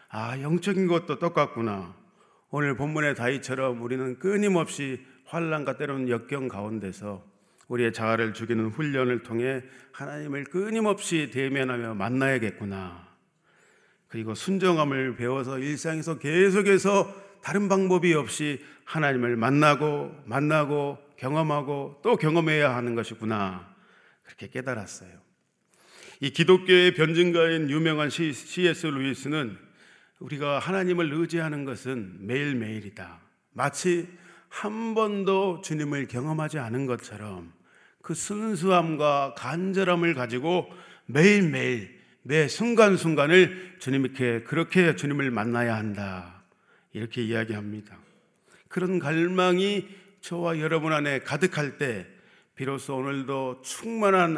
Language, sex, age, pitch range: Korean, male, 40-59, 125-175 Hz